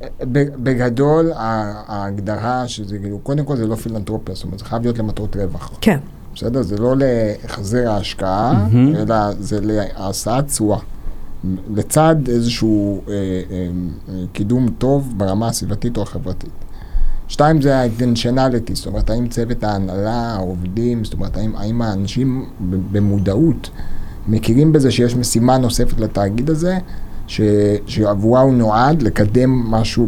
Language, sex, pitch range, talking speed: Hebrew, male, 100-125 Hz, 120 wpm